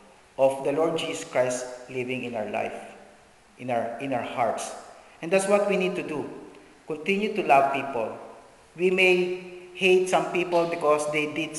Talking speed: 170 wpm